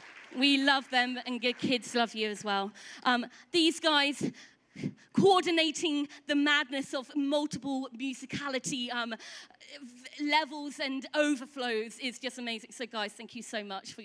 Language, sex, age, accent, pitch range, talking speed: English, female, 20-39, British, 235-300 Hz, 145 wpm